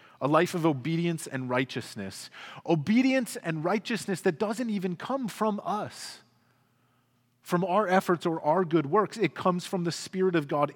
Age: 30-49